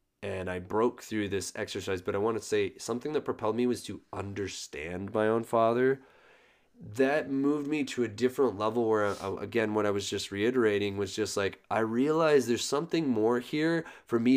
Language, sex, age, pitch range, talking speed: English, male, 20-39, 110-160 Hz, 190 wpm